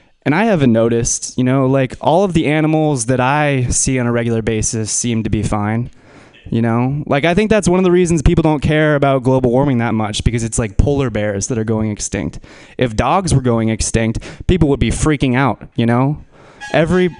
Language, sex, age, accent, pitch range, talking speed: English, male, 20-39, American, 120-155 Hz, 215 wpm